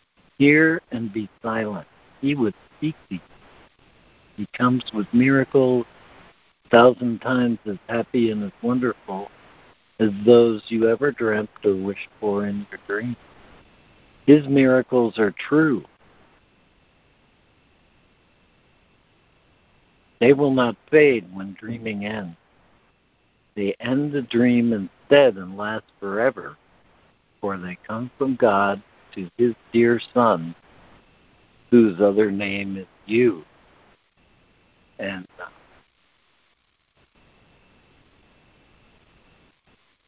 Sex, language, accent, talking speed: male, English, American, 100 wpm